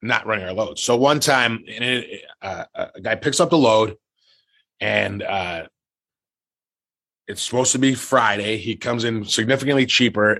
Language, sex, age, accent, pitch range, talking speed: English, male, 30-49, American, 100-125 Hz, 150 wpm